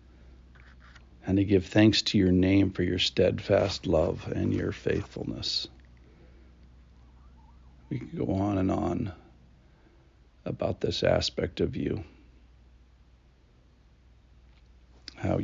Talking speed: 100 wpm